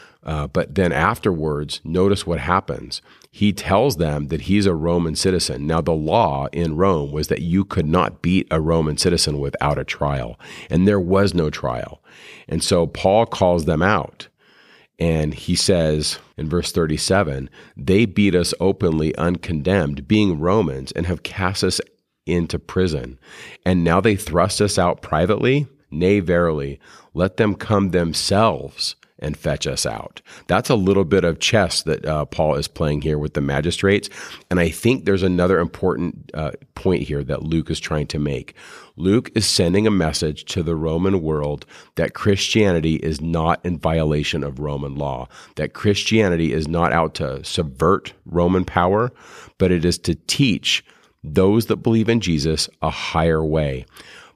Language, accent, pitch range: English, American, 75-95 Hz